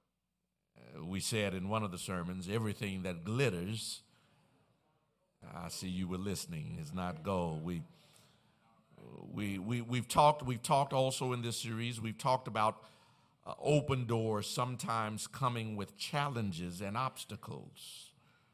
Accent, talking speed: American, 130 wpm